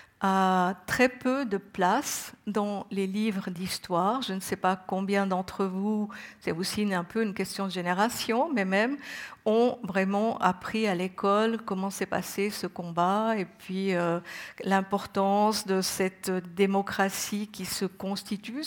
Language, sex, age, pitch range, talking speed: French, female, 50-69, 190-225 Hz, 150 wpm